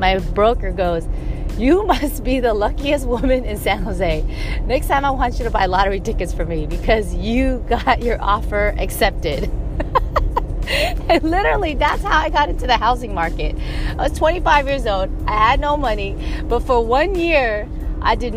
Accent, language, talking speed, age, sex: American, English, 175 wpm, 30-49, female